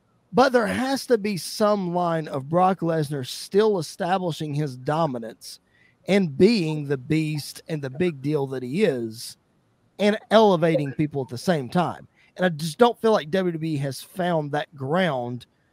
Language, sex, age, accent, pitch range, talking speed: English, male, 30-49, American, 145-205 Hz, 165 wpm